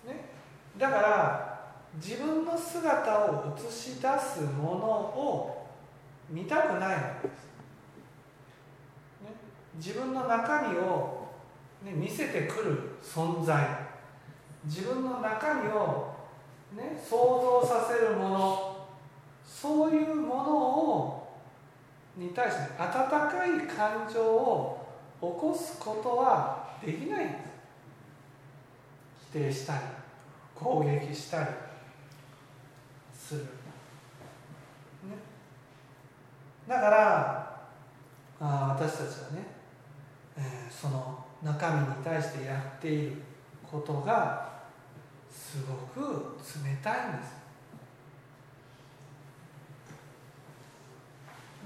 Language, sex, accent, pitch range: Japanese, male, native, 140-210 Hz